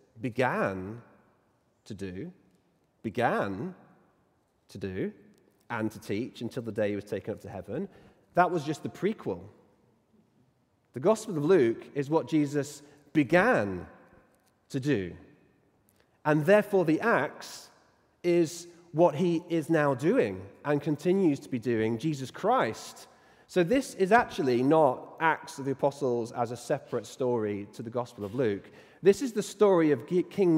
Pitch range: 110-175 Hz